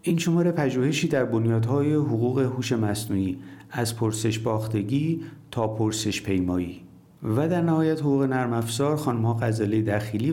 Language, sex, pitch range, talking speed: Persian, male, 105-135 Hz, 130 wpm